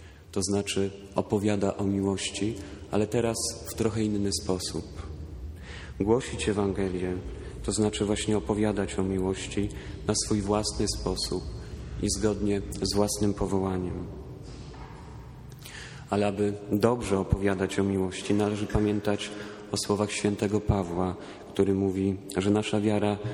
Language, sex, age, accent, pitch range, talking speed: Polish, male, 40-59, native, 95-105 Hz, 115 wpm